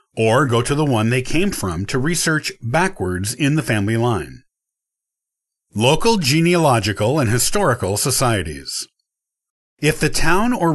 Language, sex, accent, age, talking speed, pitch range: English, male, American, 50-69, 135 wpm, 115-160 Hz